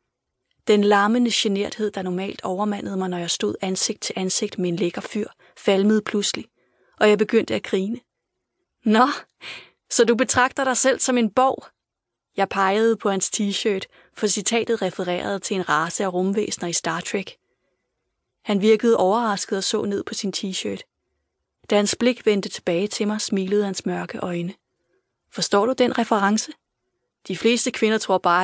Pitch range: 190-220 Hz